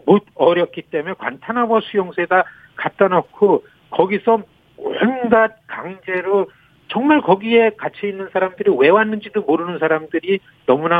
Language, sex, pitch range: Korean, male, 160-215 Hz